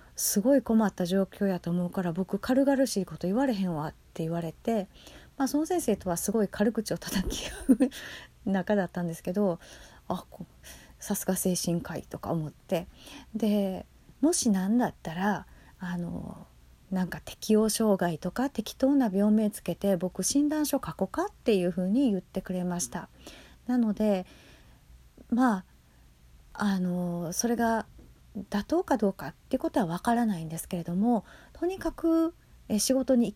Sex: female